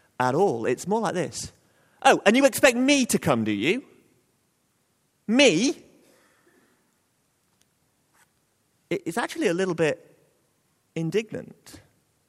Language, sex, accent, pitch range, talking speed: English, male, British, 150-235 Hz, 105 wpm